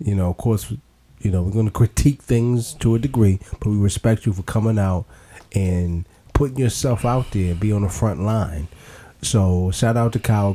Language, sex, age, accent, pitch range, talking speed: English, male, 30-49, American, 90-120 Hz, 210 wpm